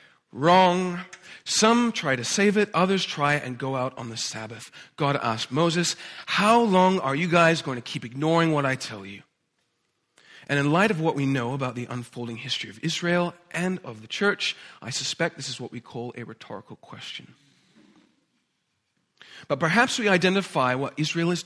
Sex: male